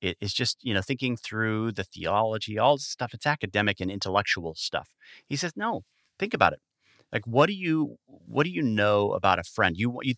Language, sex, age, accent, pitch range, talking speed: English, male, 30-49, American, 95-120 Hz, 205 wpm